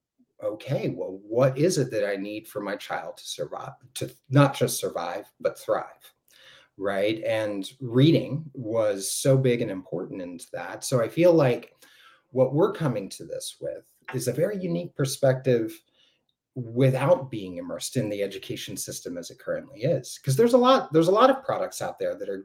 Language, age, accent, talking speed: English, 30-49, American, 180 wpm